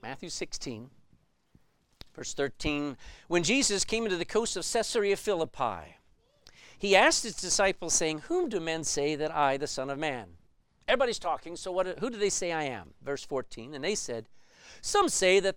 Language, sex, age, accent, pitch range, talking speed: English, male, 50-69, American, 145-210 Hz, 175 wpm